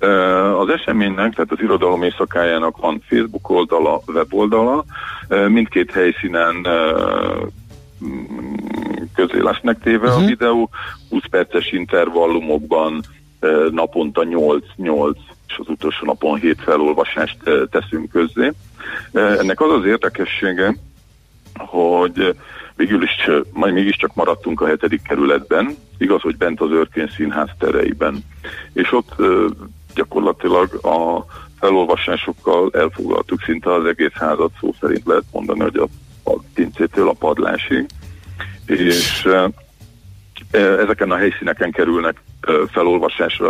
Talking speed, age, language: 100 wpm, 40-59, Hungarian